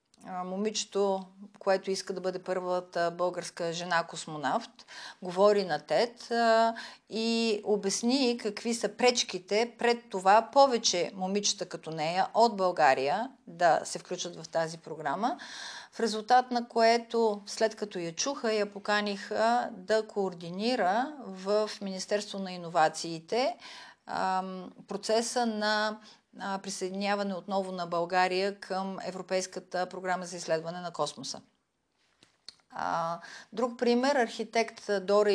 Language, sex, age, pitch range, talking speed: Bulgarian, female, 40-59, 180-220 Hz, 110 wpm